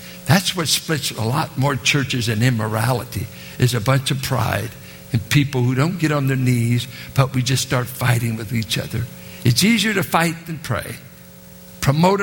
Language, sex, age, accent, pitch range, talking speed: English, male, 60-79, American, 125-185 Hz, 180 wpm